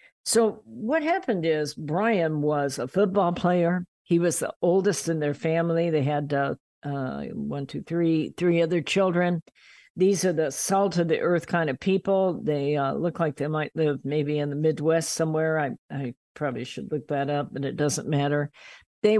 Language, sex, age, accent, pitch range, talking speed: English, female, 50-69, American, 145-175 Hz, 190 wpm